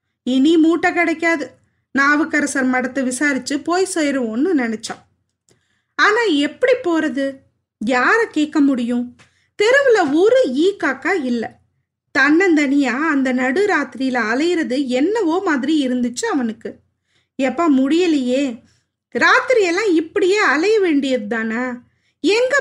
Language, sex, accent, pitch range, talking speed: Tamil, female, native, 260-360 Hz, 95 wpm